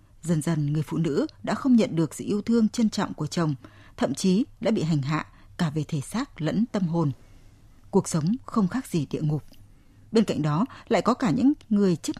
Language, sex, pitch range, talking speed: Vietnamese, female, 155-220 Hz, 220 wpm